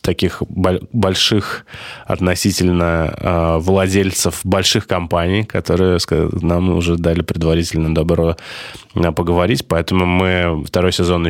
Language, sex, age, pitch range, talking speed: Russian, male, 20-39, 85-95 Hz, 95 wpm